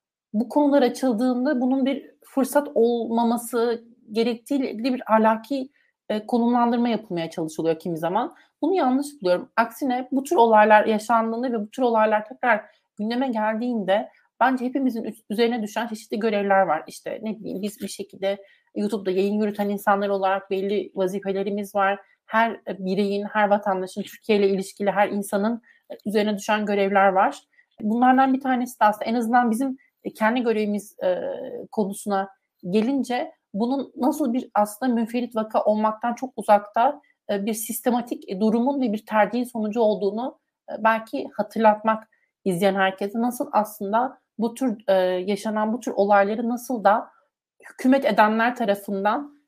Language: Turkish